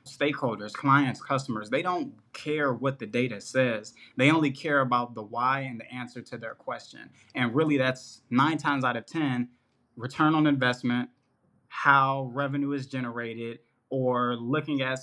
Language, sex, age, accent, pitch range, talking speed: English, male, 20-39, American, 120-140 Hz, 160 wpm